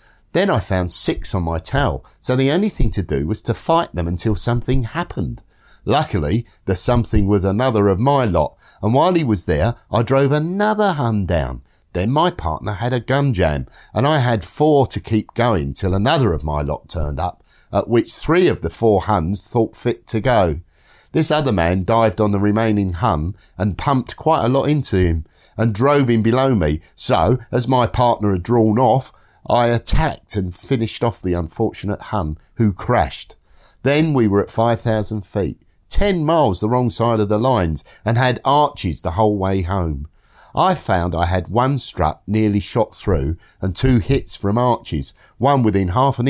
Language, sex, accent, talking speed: English, male, British, 190 wpm